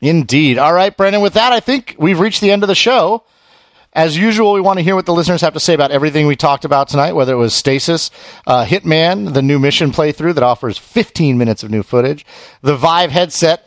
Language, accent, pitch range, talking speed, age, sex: English, American, 130-175 Hz, 235 wpm, 40-59, male